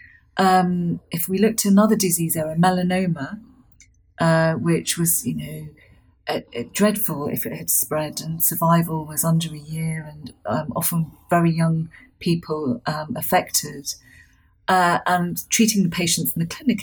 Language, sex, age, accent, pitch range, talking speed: English, female, 40-59, British, 165-200 Hz, 155 wpm